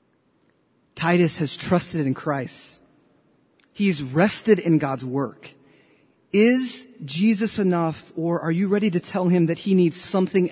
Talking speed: 135 wpm